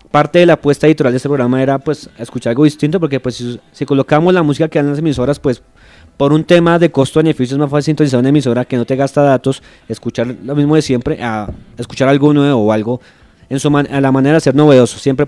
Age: 20-39